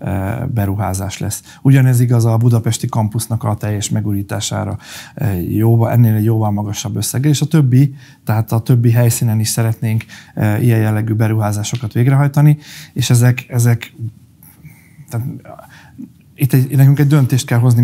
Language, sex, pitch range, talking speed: Hungarian, male, 110-130 Hz, 130 wpm